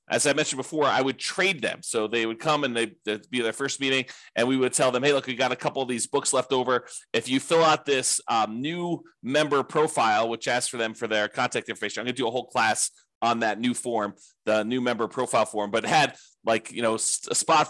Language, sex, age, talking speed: English, male, 30-49, 255 wpm